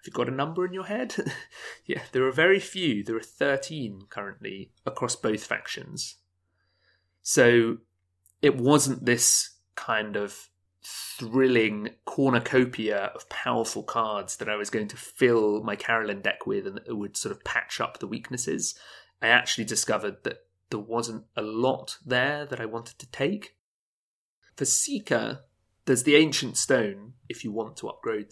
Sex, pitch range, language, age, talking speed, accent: male, 110-140 Hz, English, 30-49, 160 wpm, British